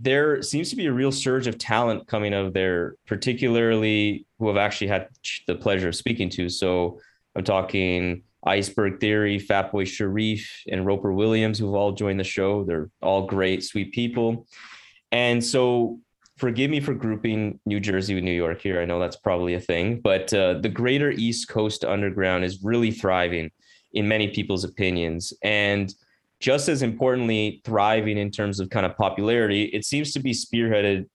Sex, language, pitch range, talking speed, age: male, English, 95-115 Hz, 175 wpm, 20-39